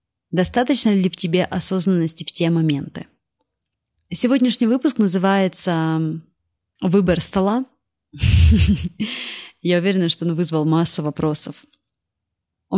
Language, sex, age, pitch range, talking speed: Russian, female, 30-49, 165-225 Hz, 100 wpm